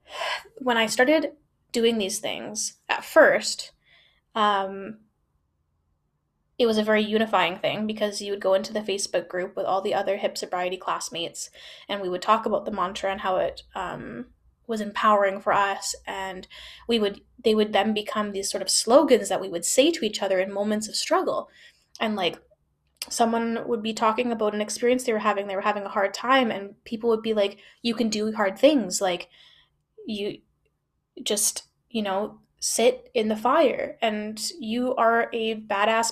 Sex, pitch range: female, 200-255 Hz